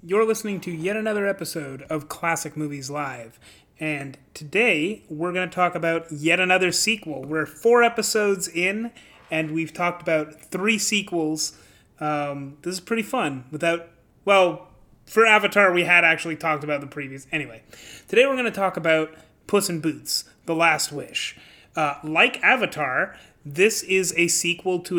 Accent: American